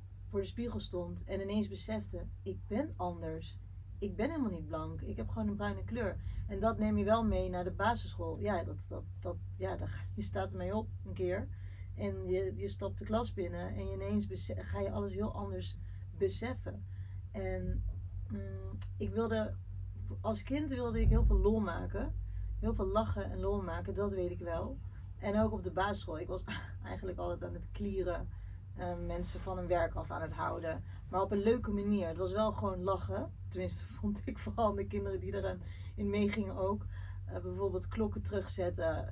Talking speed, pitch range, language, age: 200 wpm, 90-100 Hz, Dutch, 30-49